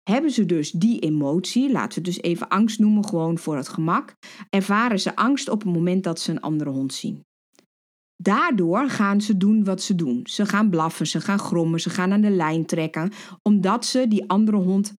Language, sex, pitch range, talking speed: Dutch, female, 170-220 Hz, 205 wpm